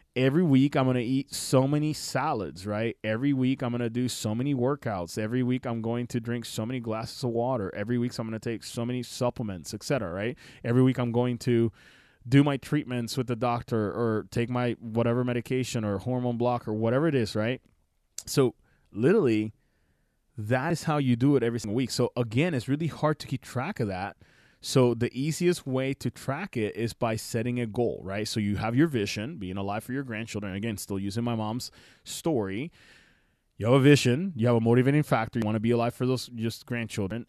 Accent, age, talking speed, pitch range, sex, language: American, 20-39, 215 wpm, 110-125 Hz, male, English